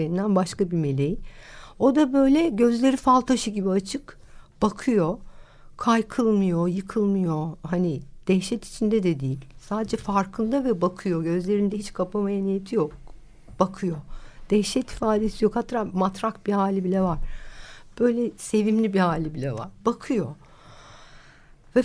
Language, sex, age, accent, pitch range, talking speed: Turkish, female, 60-79, native, 170-220 Hz, 130 wpm